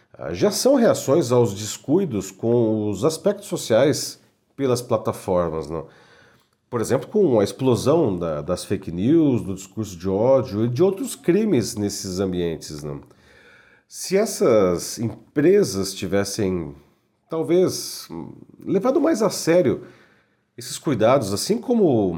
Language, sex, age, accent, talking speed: Portuguese, male, 40-59, Brazilian, 120 wpm